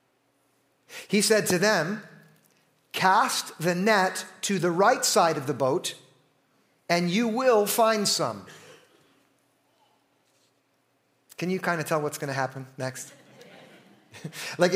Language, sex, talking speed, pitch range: English, male, 120 wpm, 155-205 Hz